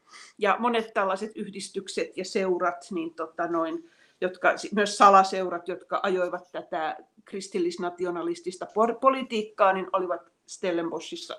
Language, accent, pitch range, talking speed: Finnish, native, 185-235 Hz, 105 wpm